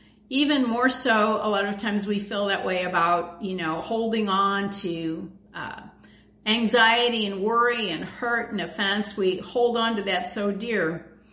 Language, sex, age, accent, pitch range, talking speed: English, female, 50-69, American, 195-240 Hz, 170 wpm